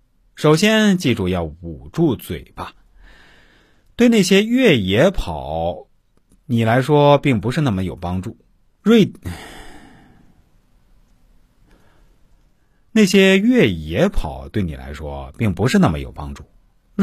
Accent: native